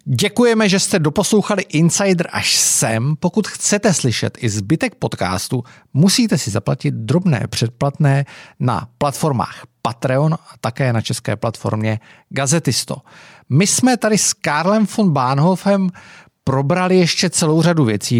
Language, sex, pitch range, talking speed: Czech, male, 115-150 Hz, 130 wpm